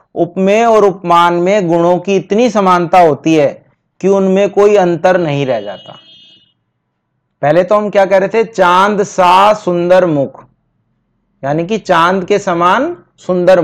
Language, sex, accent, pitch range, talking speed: Hindi, male, native, 165-210 Hz, 150 wpm